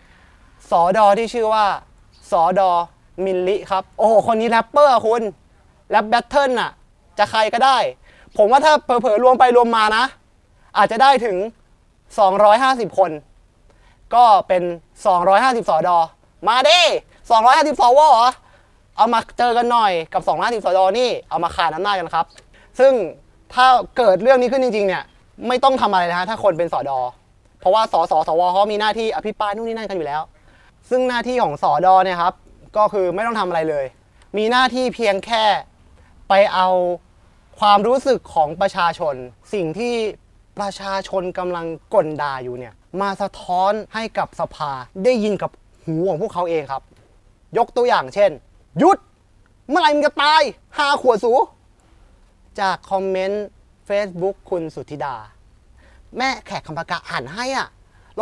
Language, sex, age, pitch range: Thai, male, 20-39, 180-240 Hz